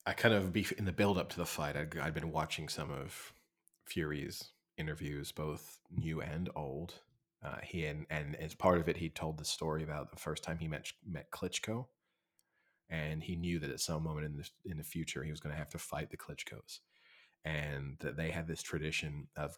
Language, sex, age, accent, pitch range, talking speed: English, male, 30-49, American, 75-85 Hz, 215 wpm